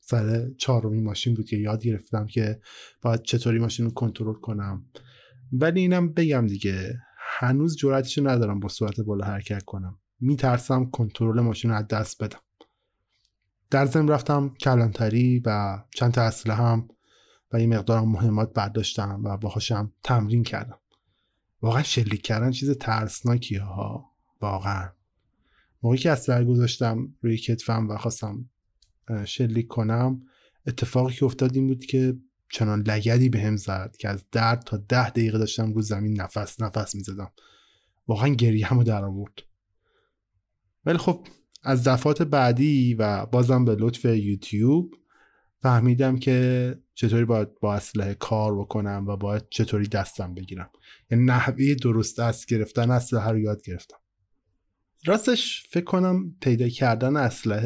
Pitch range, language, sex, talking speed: 105-125 Hz, Persian, male, 140 wpm